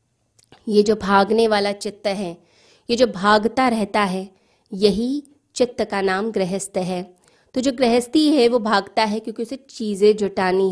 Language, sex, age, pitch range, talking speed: Hindi, female, 20-39, 190-230 Hz, 155 wpm